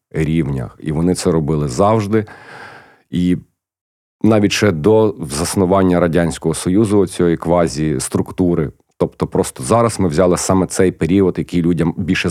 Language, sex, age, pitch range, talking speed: Ukrainian, male, 40-59, 80-100 Hz, 130 wpm